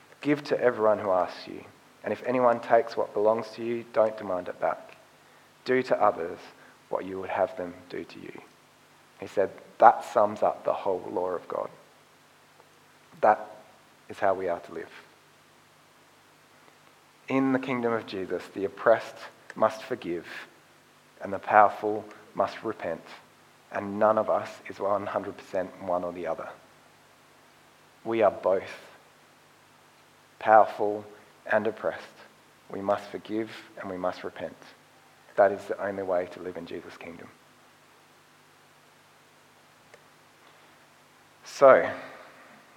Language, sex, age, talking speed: English, male, 30-49, 130 wpm